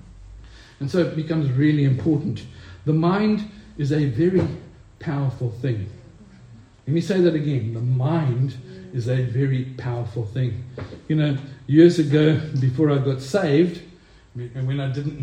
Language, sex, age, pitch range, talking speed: English, male, 60-79, 130-170 Hz, 145 wpm